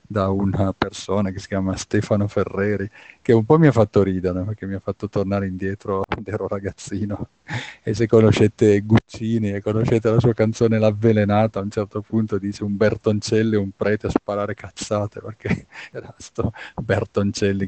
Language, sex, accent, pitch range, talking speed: Italian, male, native, 100-110 Hz, 175 wpm